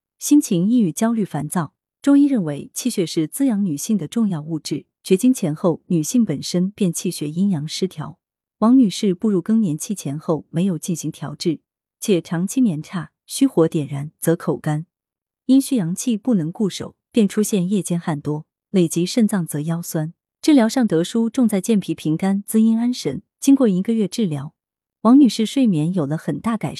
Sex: female